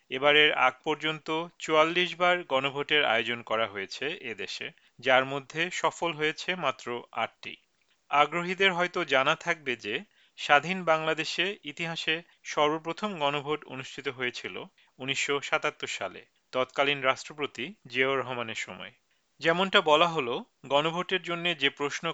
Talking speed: 115 wpm